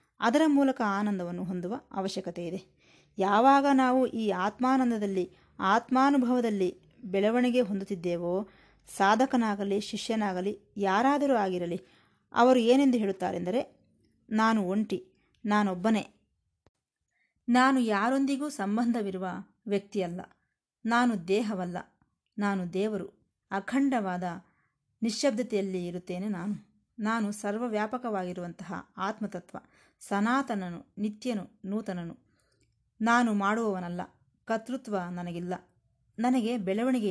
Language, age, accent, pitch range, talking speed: Kannada, 20-39, native, 185-240 Hz, 75 wpm